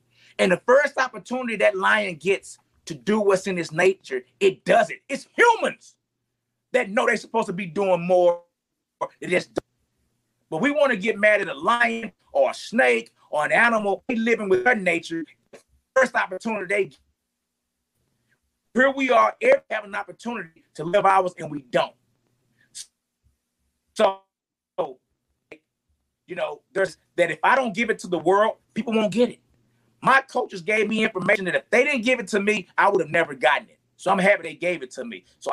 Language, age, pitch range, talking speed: English, 30-49, 165-230 Hz, 185 wpm